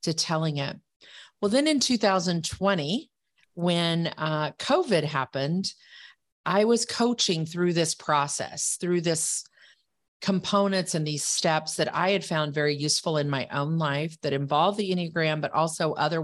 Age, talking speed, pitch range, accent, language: 40-59, 150 wpm, 150-190 Hz, American, English